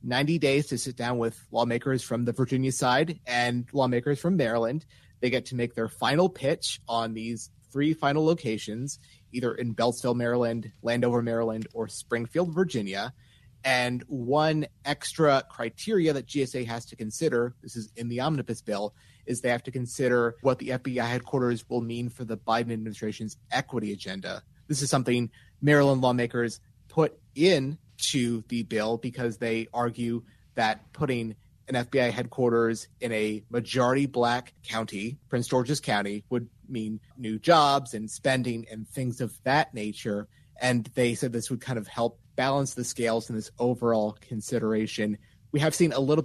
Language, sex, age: English, male, 30-49